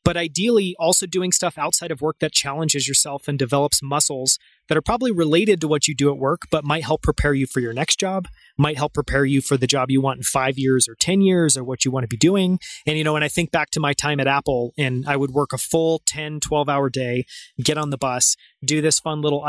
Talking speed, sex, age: 260 wpm, male, 30-49